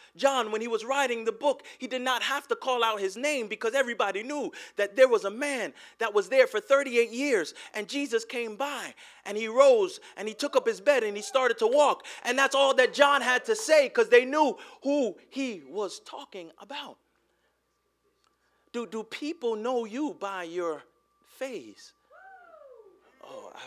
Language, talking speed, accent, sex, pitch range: English, 185 wpm, American, male, 225-305 Hz